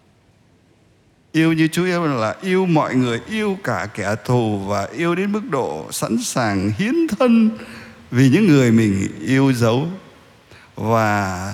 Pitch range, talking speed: 110-170 Hz, 145 wpm